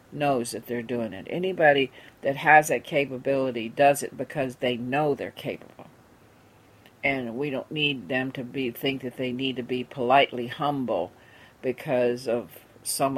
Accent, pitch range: American, 120-145 Hz